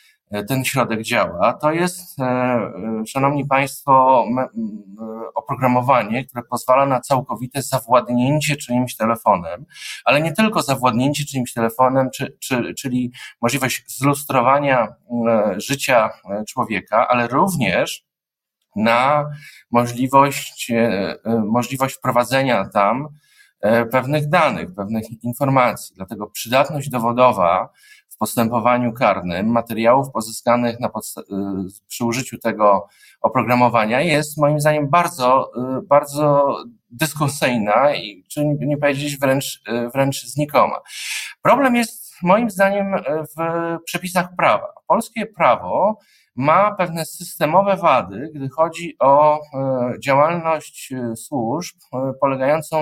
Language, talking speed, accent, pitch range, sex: Polish, 95 wpm, native, 120-160 Hz, male